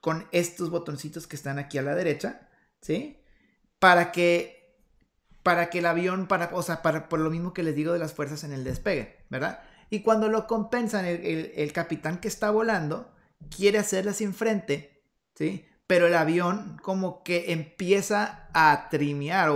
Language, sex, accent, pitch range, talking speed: Spanish, male, Mexican, 155-200 Hz, 175 wpm